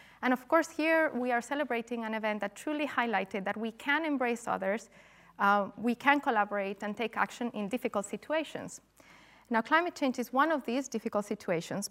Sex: female